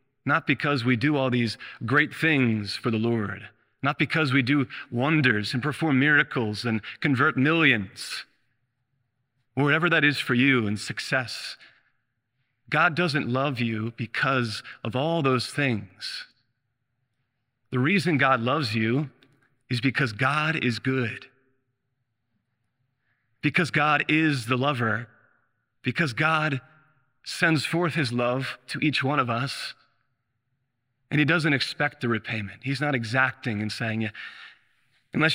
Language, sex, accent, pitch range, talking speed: English, male, American, 120-140 Hz, 130 wpm